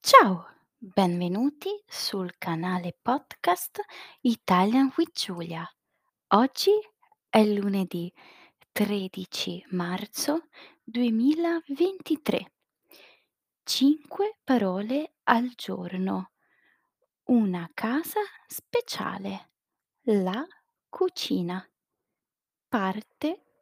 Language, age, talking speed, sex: Italian, 20-39, 60 wpm, female